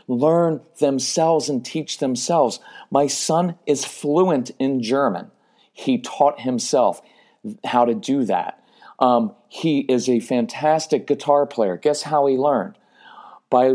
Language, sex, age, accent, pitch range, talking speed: English, male, 40-59, American, 115-145 Hz, 130 wpm